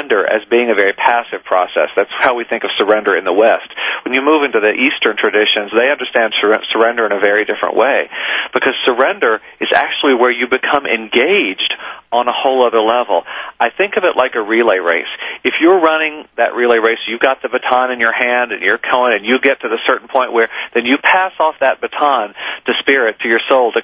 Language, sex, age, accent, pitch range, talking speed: English, male, 40-59, American, 115-135 Hz, 220 wpm